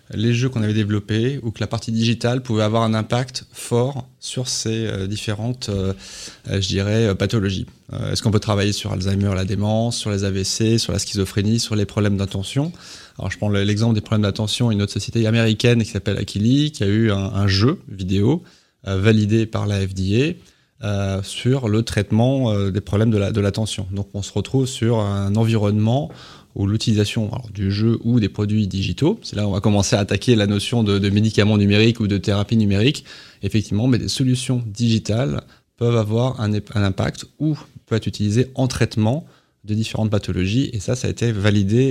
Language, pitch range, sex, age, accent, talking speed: French, 100-120 Hz, male, 20-39, French, 195 wpm